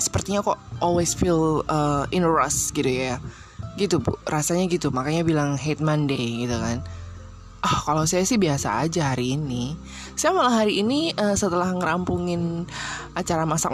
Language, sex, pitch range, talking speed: Indonesian, female, 145-205 Hz, 155 wpm